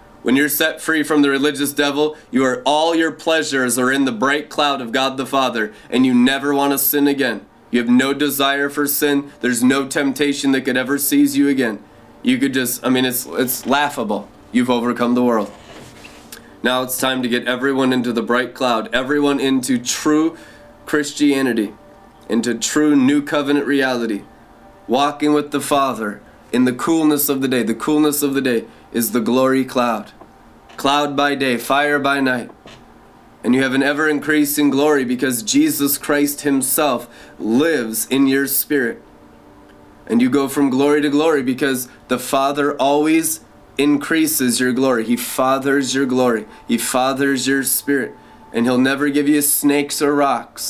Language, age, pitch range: English, 20-39, 125-145 Hz